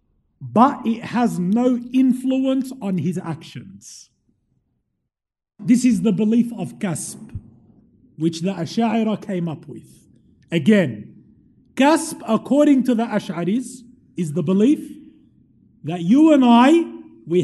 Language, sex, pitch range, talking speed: English, male, 185-265 Hz, 115 wpm